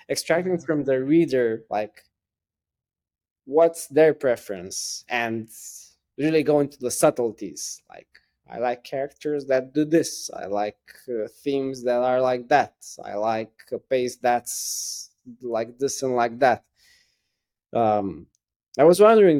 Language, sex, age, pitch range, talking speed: English, male, 20-39, 110-140 Hz, 135 wpm